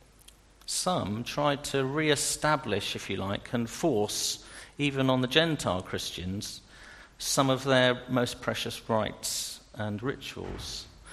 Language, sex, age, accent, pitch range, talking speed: English, male, 50-69, British, 100-140 Hz, 120 wpm